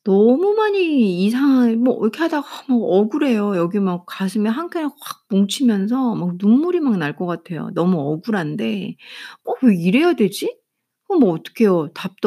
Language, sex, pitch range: Korean, female, 185-255 Hz